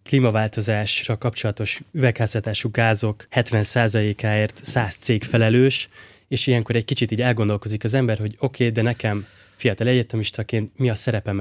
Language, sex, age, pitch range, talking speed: Hungarian, male, 20-39, 105-125 Hz, 135 wpm